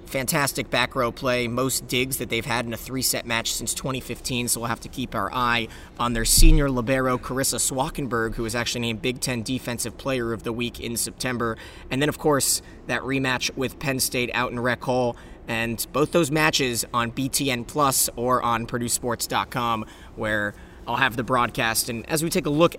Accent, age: American, 20-39